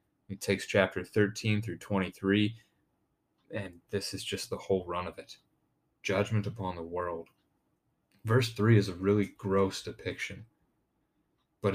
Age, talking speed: 30-49, 140 wpm